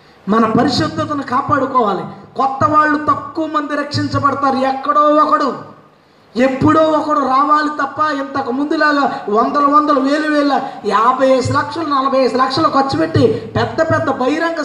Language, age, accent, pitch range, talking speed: Telugu, 20-39, native, 200-285 Hz, 125 wpm